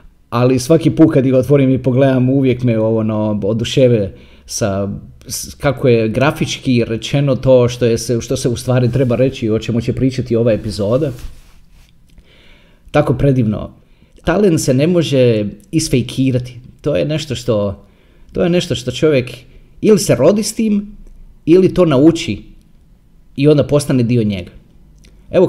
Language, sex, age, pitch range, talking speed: Croatian, male, 30-49, 120-160 Hz, 150 wpm